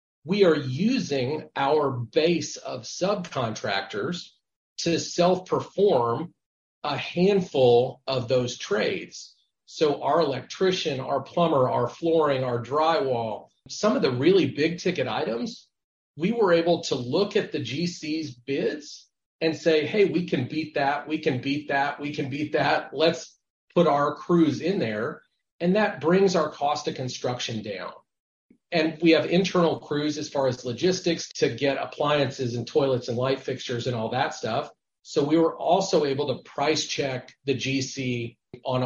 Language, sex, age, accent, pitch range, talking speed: English, male, 40-59, American, 130-170 Hz, 155 wpm